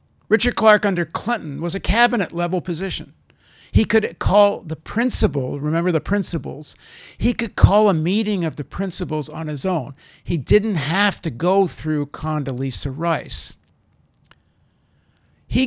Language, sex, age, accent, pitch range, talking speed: English, male, 50-69, American, 155-210 Hz, 140 wpm